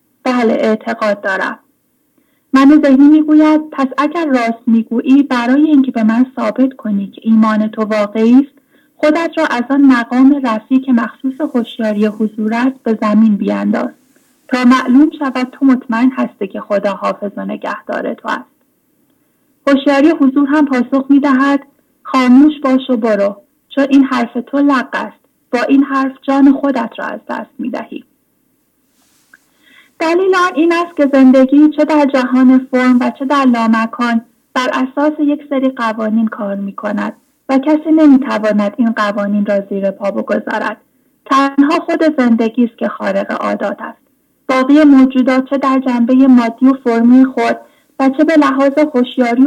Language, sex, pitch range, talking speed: English, female, 230-280 Hz, 150 wpm